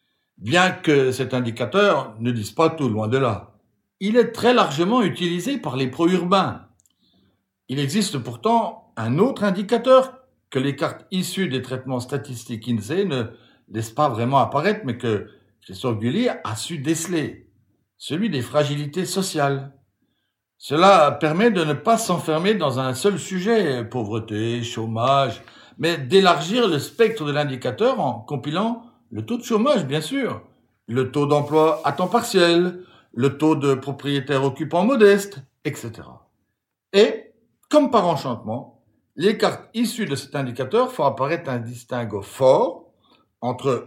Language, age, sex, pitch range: French, 60-79, male, 125-195 Hz